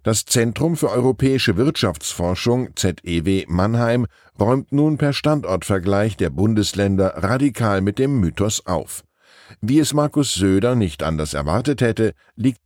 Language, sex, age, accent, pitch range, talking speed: German, male, 10-29, German, 95-130 Hz, 130 wpm